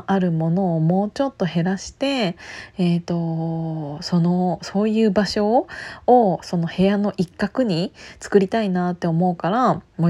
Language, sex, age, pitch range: Japanese, female, 20-39, 170-240 Hz